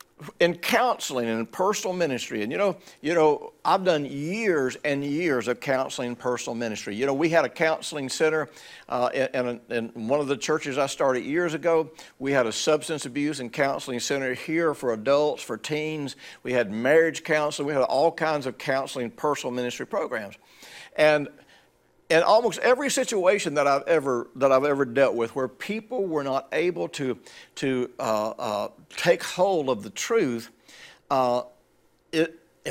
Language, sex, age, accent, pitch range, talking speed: English, male, 60-79, American, 130-165 Hz, 175 wpm